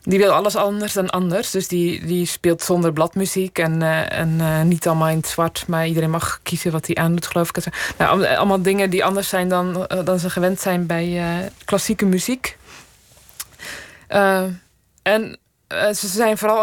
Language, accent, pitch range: Dutch, Dutch, 175-200 Hz